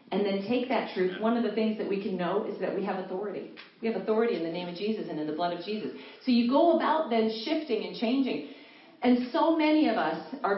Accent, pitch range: American, 215-280 Hz